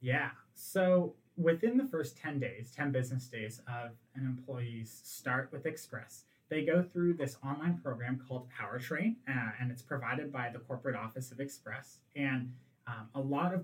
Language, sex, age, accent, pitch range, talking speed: English, male, 30-49, American, 125-155 Hz, 165 wpm